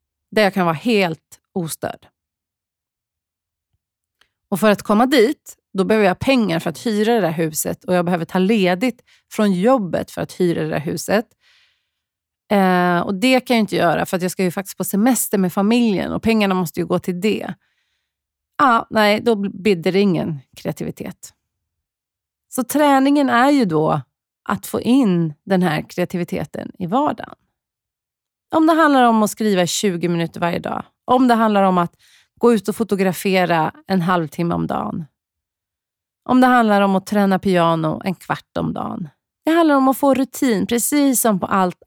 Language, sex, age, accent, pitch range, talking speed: Swedish, female, 30-49, native, 175-230 Hz, 175 wpm